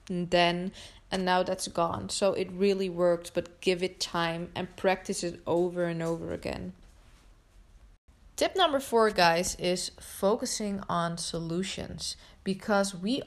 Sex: female